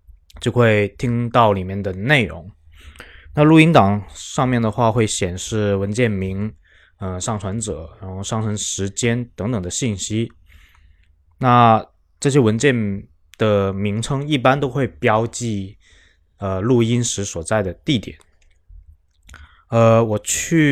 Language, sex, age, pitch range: Chinese, male, 20-39, 85-115 Hz